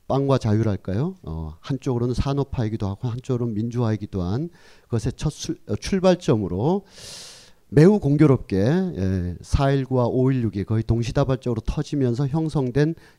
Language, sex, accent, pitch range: Korean, male, native, 100-145 Hz